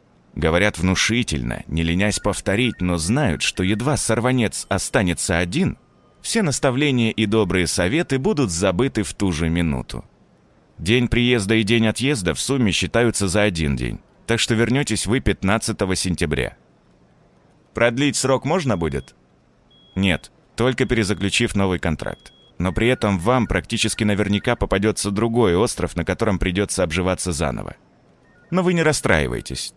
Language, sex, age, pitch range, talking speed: Russian, male, 30-49, 90-125 Hz, 135 wpm